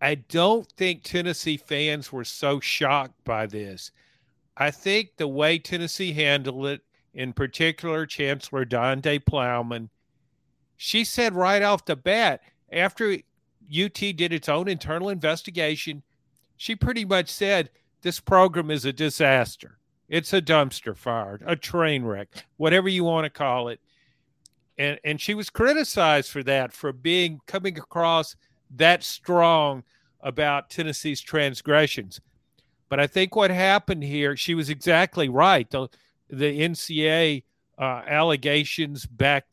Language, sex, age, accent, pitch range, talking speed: English, male, 50-69, American, 135-175 Hz, 135 wpm